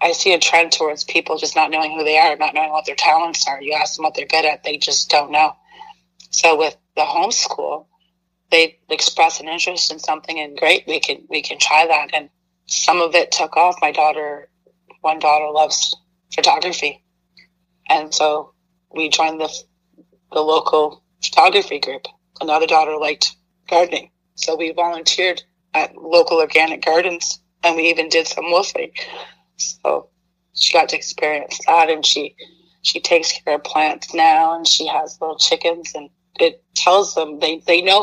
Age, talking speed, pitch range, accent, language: 30-49, 175 wpm, 155-180 Hz, American, English